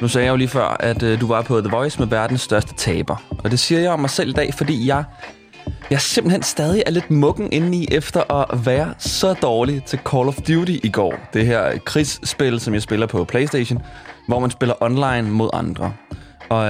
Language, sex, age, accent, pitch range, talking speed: Danish, male, 20-39, native, 125-160 Hz, 220 wpm